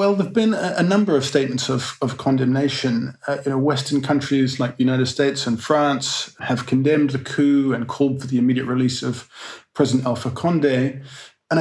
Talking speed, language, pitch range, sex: 180 wpm, English, 130-155 Hz, male